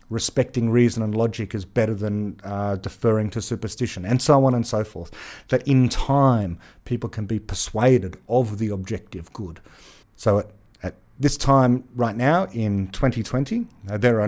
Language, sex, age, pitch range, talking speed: English, male, 40-59, 110-140 Hz, 170 wpm